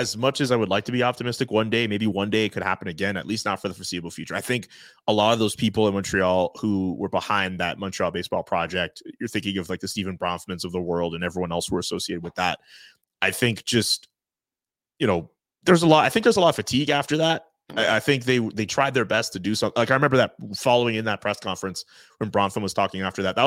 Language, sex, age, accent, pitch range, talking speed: English, male, 30-49, American, 95-120 Hz, 265 wpm